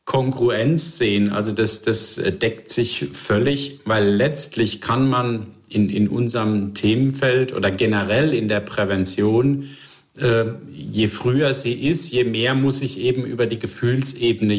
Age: 50-69